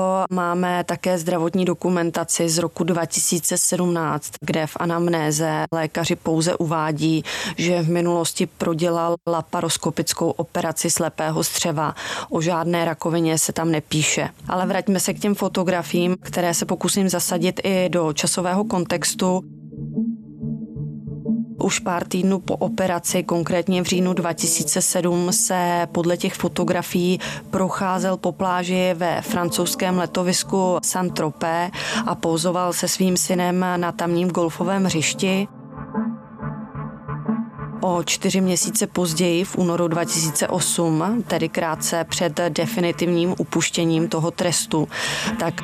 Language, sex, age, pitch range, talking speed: Czech, female, 20-39, 170-185 Hz, 110 wpm